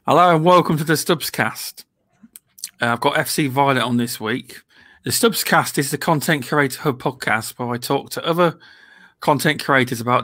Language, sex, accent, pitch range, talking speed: English, male, British, 120-150 Hz, 190 wpm